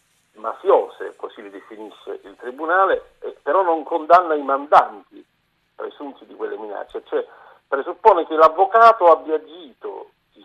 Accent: native